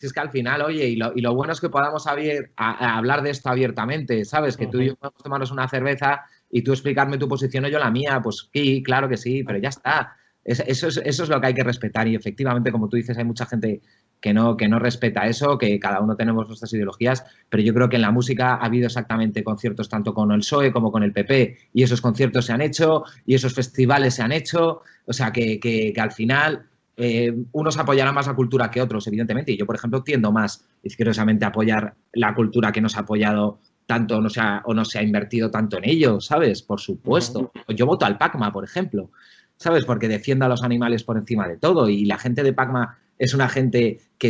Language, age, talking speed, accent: Spanish, 30-49, 245 wpm, Spanish